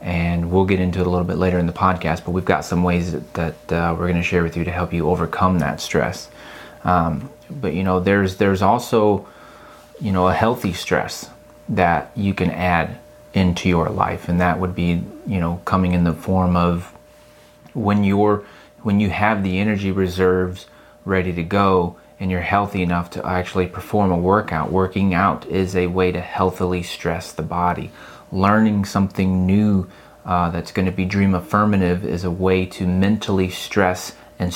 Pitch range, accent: 90-100 Hz, American